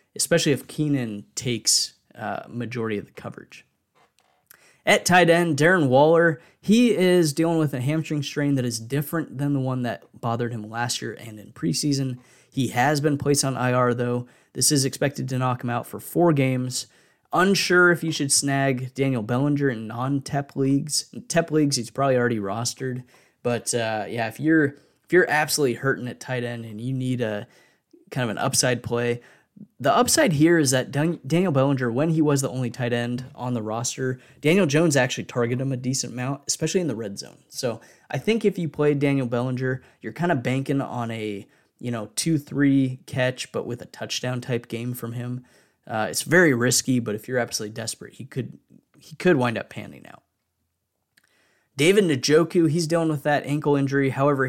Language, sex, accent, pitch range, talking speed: English, male, American, 120-150 Hz, 190 wpm